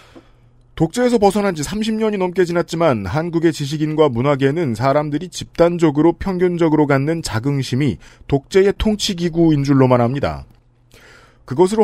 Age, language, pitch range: 40-59, Korean, 125-175 Hz